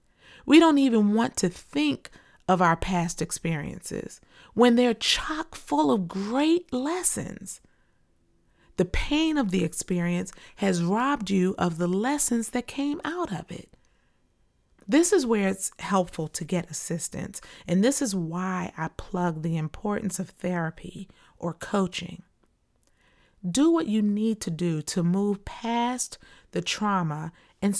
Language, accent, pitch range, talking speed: English, American, 170-225 Hz, 140 wpm